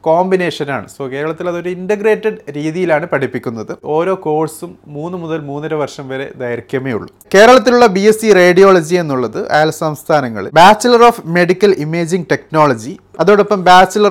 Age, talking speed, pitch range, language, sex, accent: 30-49, 130 wpm, 135-180 Hz, Malayalam, male, native